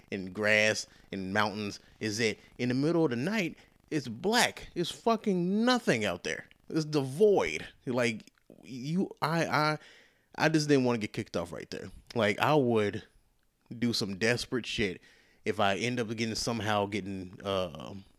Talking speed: 170 wpm